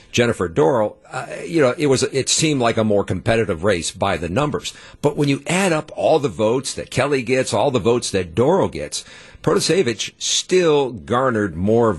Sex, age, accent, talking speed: male, 50-69, American, 190 wpm